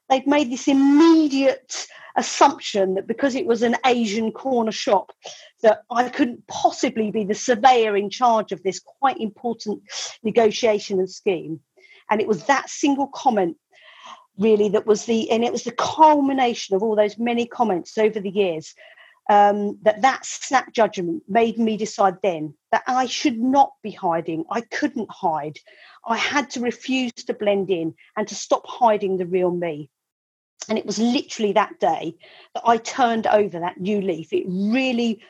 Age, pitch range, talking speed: 40-59, 200-255 Hz, 170 wpm